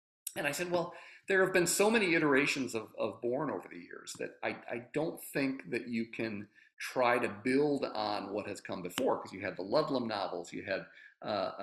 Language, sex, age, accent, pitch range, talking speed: English, male, 50-69, American, 105-150 Hz, 210 wpm